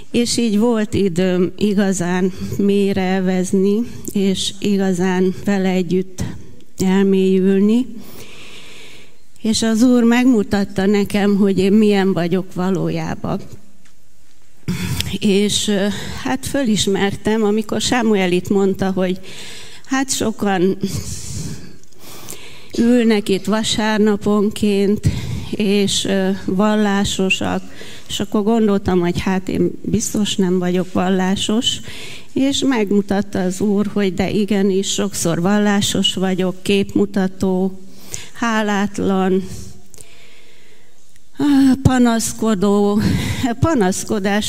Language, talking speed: Hungarian, 80 wpm